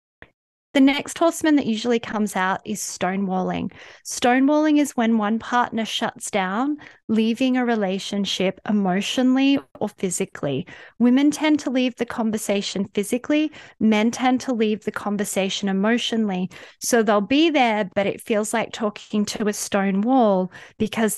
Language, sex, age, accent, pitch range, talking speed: English, female, 30-49, Australian, 200-250 Hz, 140 wpm